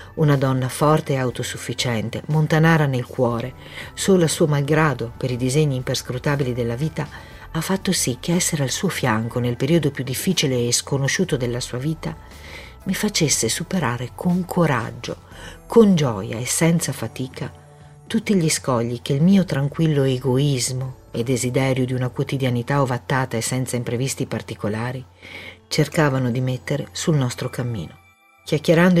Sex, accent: female, native